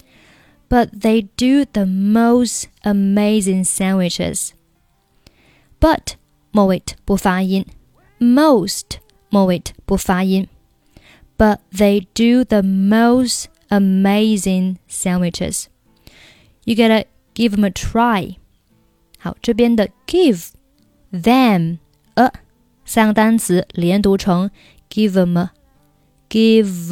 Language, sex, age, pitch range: Chinese, female, 20-39, 180-230 Hz